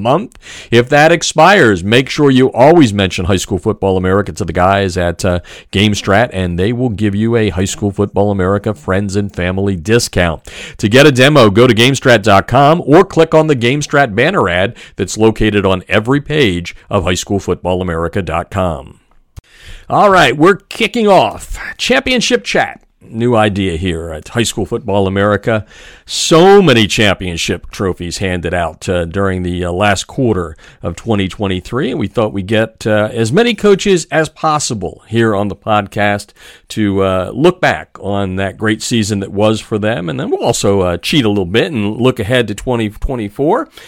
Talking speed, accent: 170 wpm, American